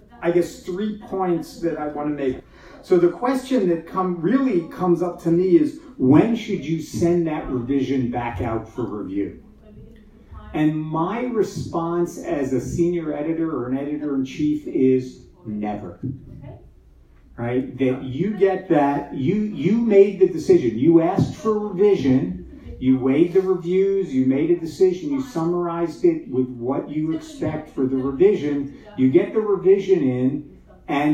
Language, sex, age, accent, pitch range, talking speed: English, male, 50-69, American, 135-200 Hz, 160 wpm